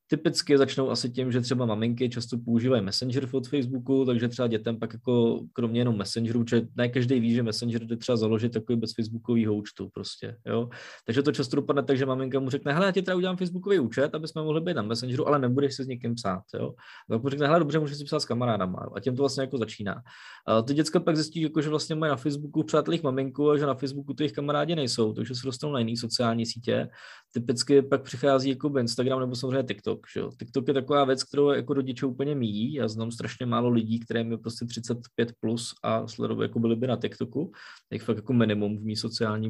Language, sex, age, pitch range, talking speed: Czech, male, 20-39, 115-140 Hz, 220 wpm